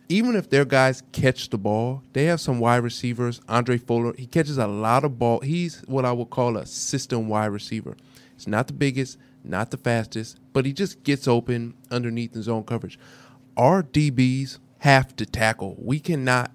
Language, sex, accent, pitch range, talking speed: English, male, American, 115-130 Hz, 190 wpm